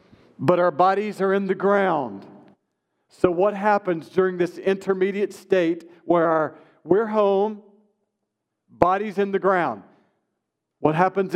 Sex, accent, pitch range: male, American, 165-205 Hz